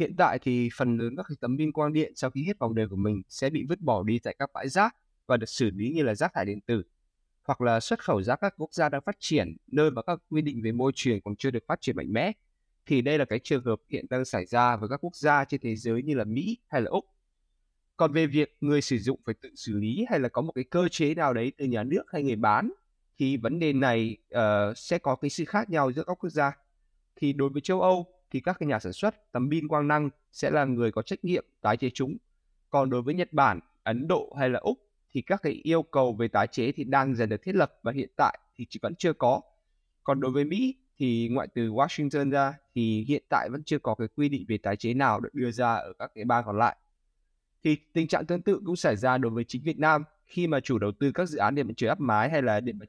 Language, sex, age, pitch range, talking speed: Vietnamese, male, 20-39, 115-155 Hz, 275 wpm